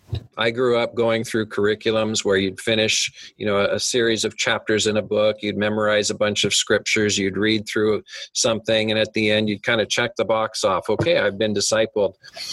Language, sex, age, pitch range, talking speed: English, male, 40-59, 105-115 Hz, 205 wpm